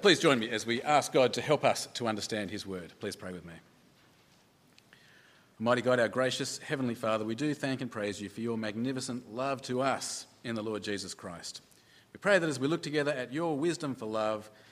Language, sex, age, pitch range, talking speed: English, male, 40-59, 110-150 Hz, 215 wpm